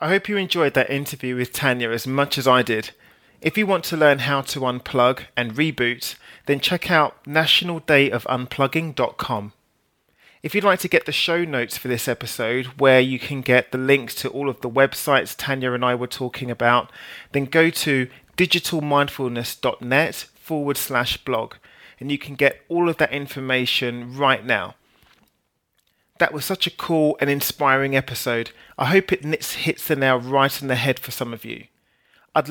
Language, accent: English, British